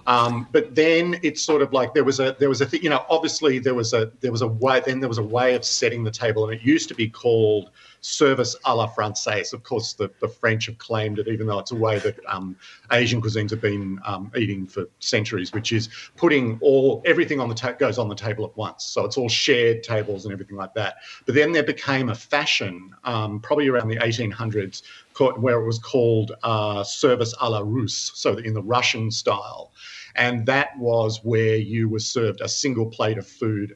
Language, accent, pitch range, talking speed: English, Australian, 105-125 Hz, 225 wpm